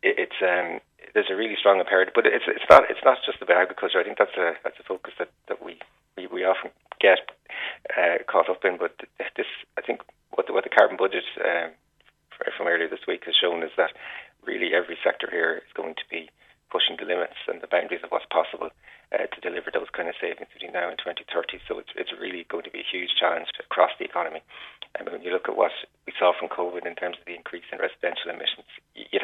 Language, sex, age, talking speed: English, male, 30-49, 230 wpm